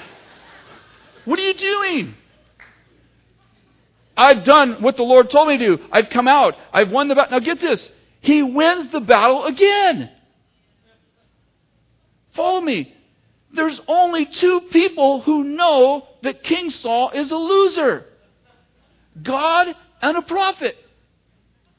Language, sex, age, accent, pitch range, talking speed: English, male, 50-69, American, 270-345 Hz, 125 wpm